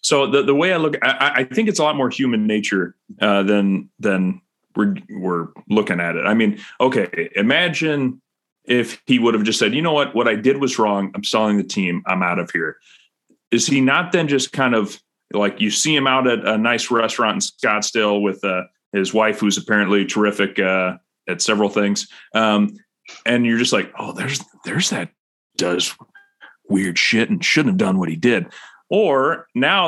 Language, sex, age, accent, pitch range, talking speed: English, male, 30-49, American, 110-165 Hz, 200 wpm